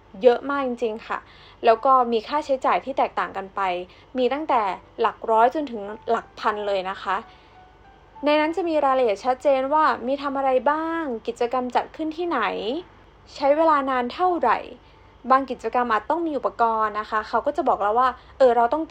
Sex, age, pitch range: female, 20-39, 225-285 Hz